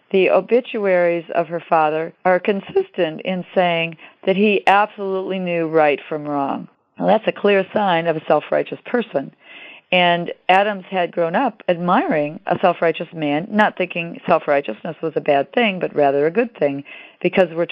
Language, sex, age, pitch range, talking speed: English, female, 50-69, 155-195 Hz, 165 wpm